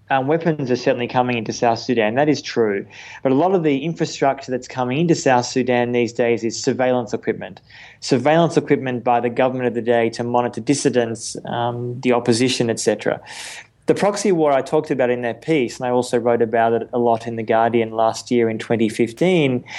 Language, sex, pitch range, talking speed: English, male, 120-135 Hz, 200 wpm